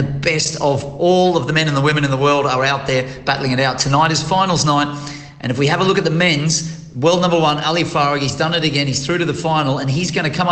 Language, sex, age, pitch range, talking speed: English, male, 40-59, 140-160 Hz, 290 wpm